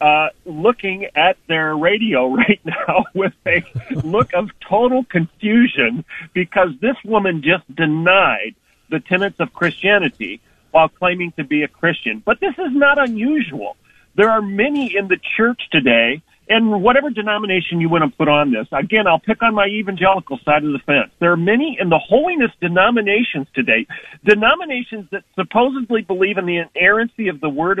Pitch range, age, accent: 175-230 Hz, 40-59, American